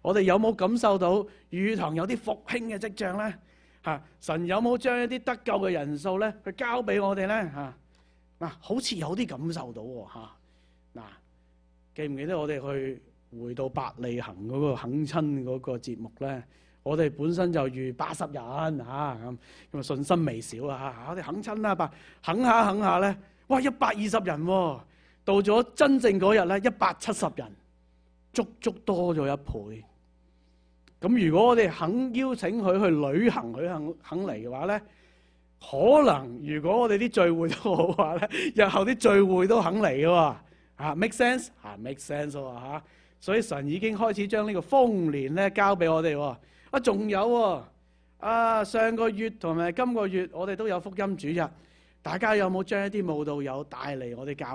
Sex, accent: male, Chinese